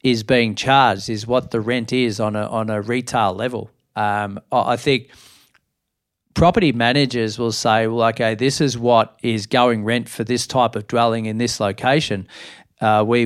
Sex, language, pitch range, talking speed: male, English, 110-130 Hz, 175 wpm